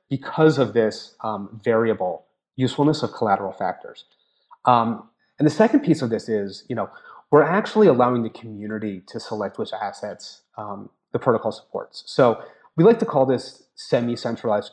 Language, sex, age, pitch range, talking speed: English, male, 30-49, 110-140 Hz, 150 wpm